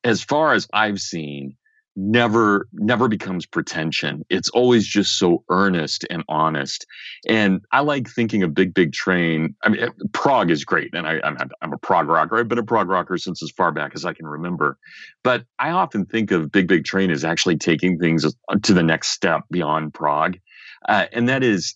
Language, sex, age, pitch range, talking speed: English, male, 40-59, 85-120 Hz, 195 wpm